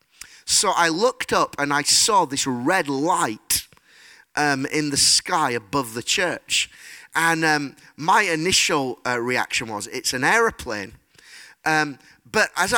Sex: male